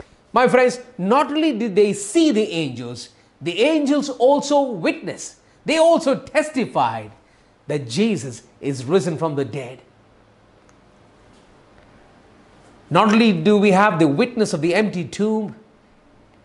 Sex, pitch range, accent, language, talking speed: male, 175-265 Hz, Indian, English, 125 wpm